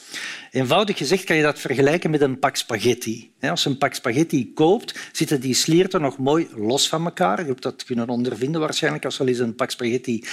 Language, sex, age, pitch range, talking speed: Dutch, male, 50-69, 120-165 Hz, 215 wpm